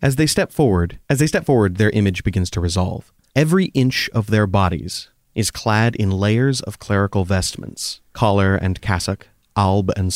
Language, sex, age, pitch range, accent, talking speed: English, male, 30-49, 100-120 Hz, American, 175 wpm